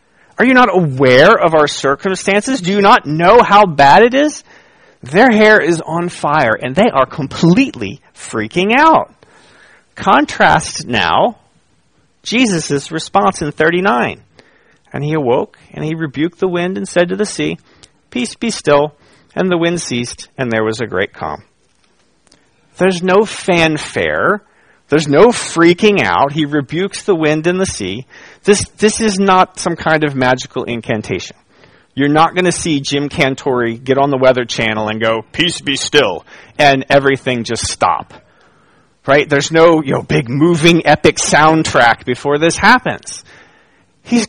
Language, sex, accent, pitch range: English, male, American, 135-185 Hz